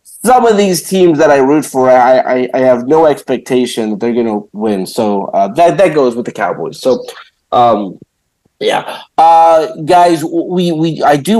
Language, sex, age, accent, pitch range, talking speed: English, male, 30-49, American, 130-165 Hz, 190 wpm